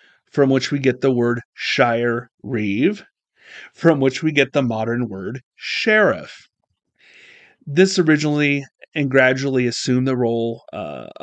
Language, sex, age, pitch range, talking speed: English, male, 30-49, 115-140 Hz, 130 wpm